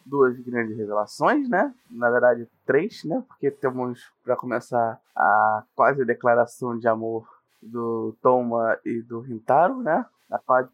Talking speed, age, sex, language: 140 wpm, 20-39, male, Portuguese